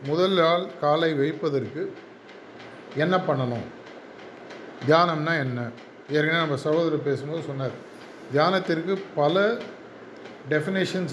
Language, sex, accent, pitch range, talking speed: Tamil, male, native, 145-180 Hz, 85 wpm